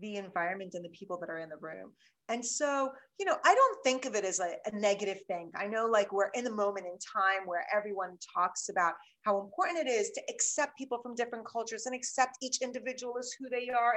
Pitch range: 195-260 Hz